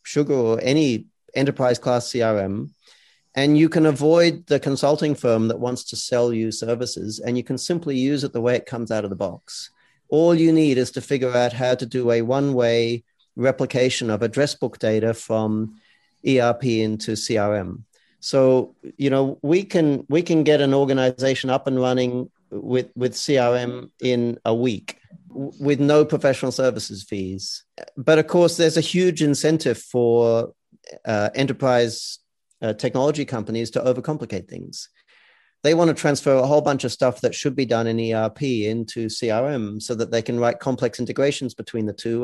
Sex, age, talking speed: male, 40-59, 175 wpm